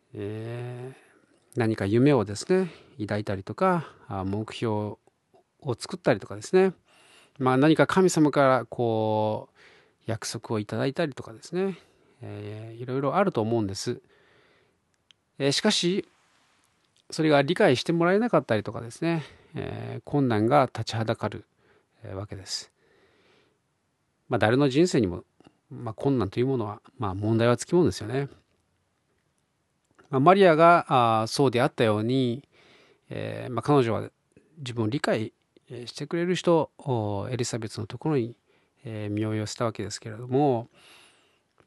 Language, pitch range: Japanese, 110-155 Hz